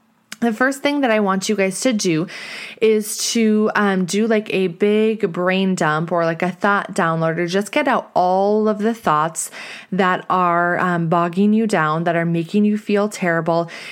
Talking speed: 190 wpm